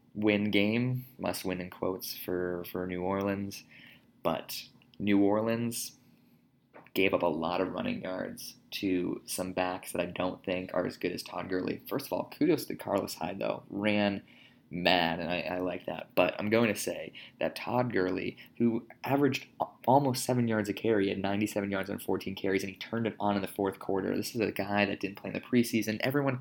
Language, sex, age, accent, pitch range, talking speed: English, male, 20-39, American, 95-115 Hz, 205 wpm